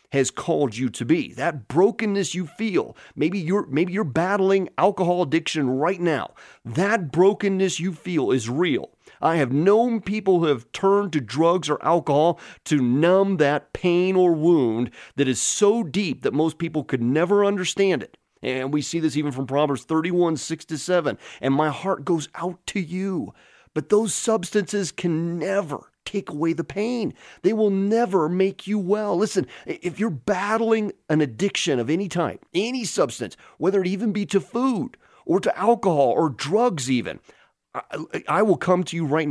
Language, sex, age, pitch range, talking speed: English, male, 30-49, 150-195 Hz, 175 wpm